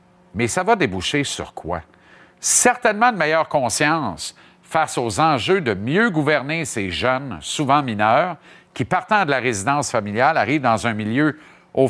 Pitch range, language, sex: 120-165 Hz, French, male